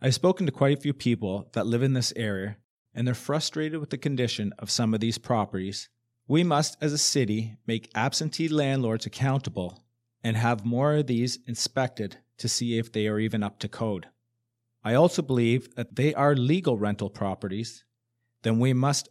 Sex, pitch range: male, 110-130 Hz